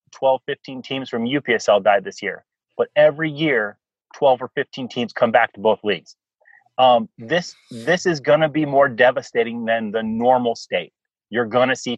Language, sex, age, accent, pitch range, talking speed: English, male, 30-49, American, 115-135 Hz, 185 wpm